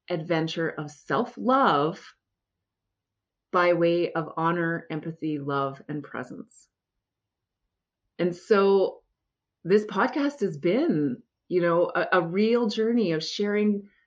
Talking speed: 105 wpm